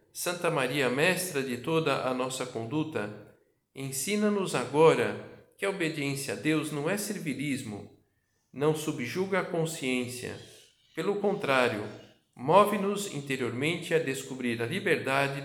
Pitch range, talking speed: 115-145 Hz, 115 wpm